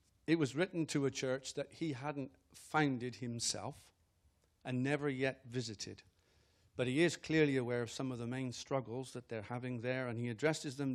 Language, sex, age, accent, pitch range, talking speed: English, male, 50-69, British, 105-135 Hz, 185 wpm